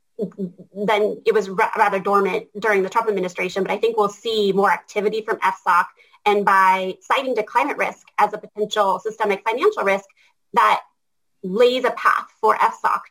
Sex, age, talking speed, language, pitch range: female, 30-49, 165 wpm, English, 195-225 Hz